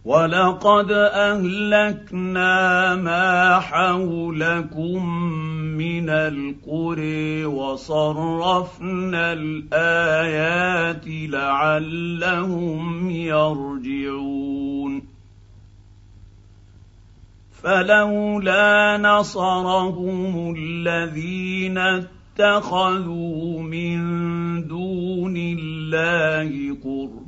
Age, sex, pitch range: 50-69, male, 140-175 Hz